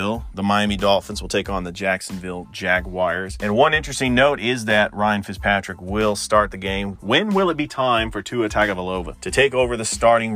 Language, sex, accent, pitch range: English, male, American, 100-120 Hz